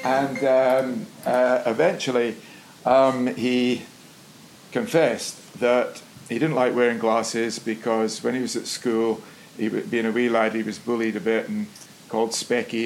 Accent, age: British, 50-69